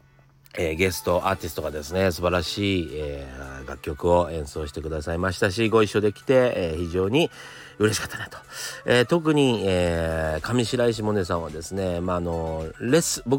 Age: 40-59